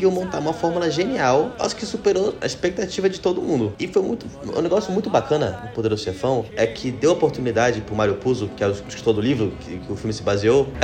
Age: 20-39